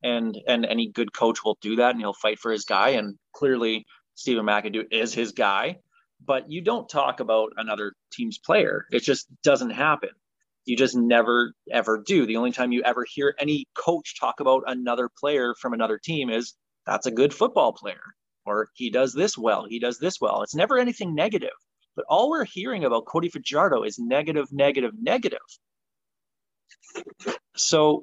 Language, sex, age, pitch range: English, male, 30-49, 110-145 Hz